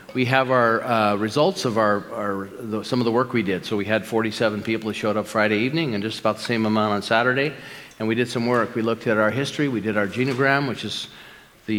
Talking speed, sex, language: 255 wpm, male, English